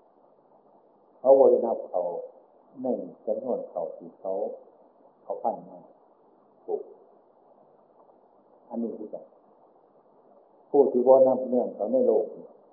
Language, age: Thai, 60-79